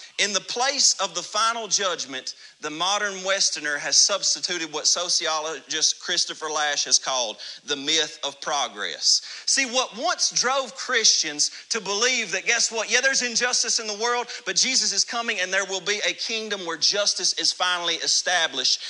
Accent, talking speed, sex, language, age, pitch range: American, 170 wpm, male, English, 40-59, 185-255 Hz